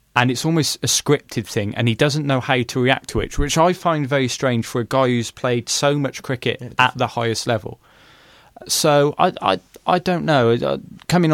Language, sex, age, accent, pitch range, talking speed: English, male, 20-39, British, 115-145 Hz, 205 wpm